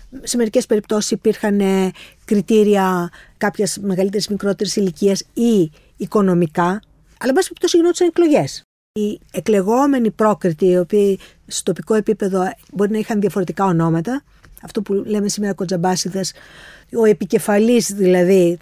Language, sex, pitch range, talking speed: Greek, female, 180-245 Hz, 125 wpm